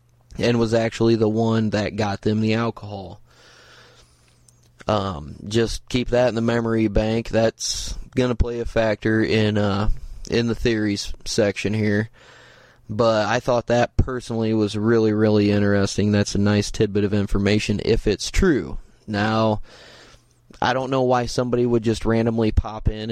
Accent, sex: American, male